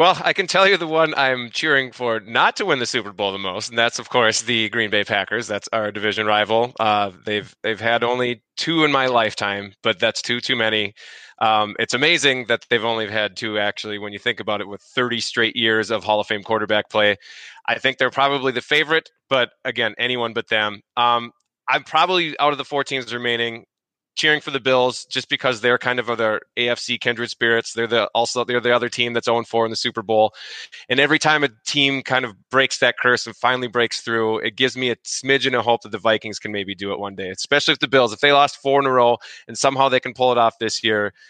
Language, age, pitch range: English, 20-39, 110-130 Hz